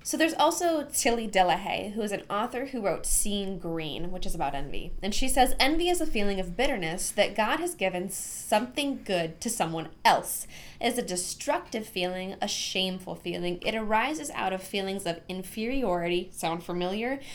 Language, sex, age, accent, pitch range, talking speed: English, female, 10-29, American, 175-230 Hz, 180 wpm